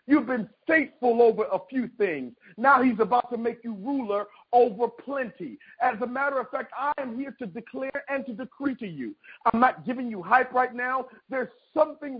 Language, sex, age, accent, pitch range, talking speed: English, male, 50-69, American, 230-280 Hz, 195 wpm